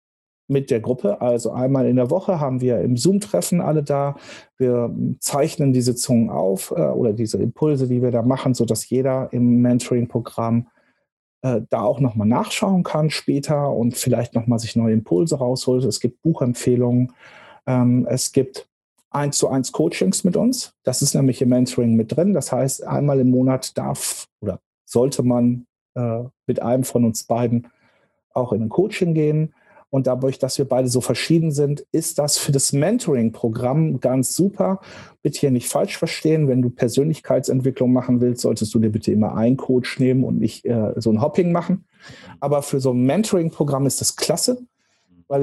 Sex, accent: male, German